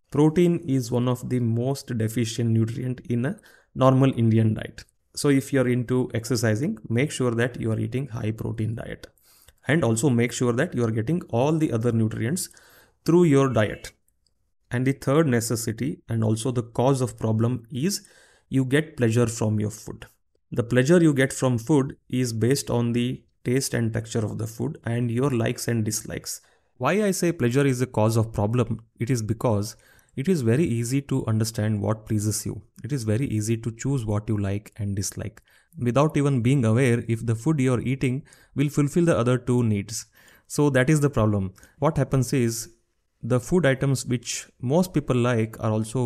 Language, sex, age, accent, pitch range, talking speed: Kannada, male, 30-49, native, 110-135 Hz, 190 wpm